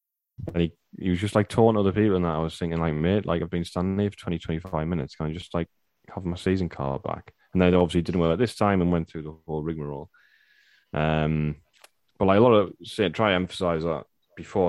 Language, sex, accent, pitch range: English, male, British, 80-95 Hz